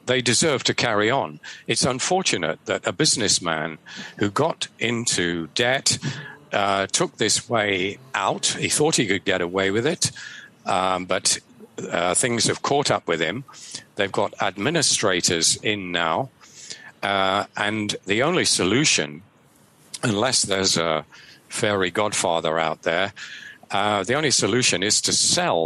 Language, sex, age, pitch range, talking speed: English, male, 50-69, 95-125 Hz, 140 wpm